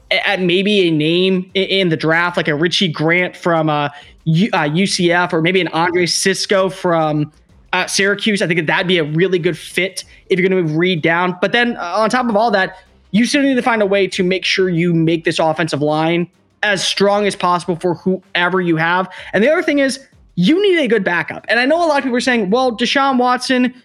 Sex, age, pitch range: male, 20-39, 170-230 Hz